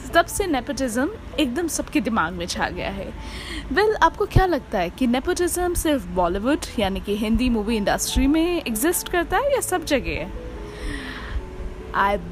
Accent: native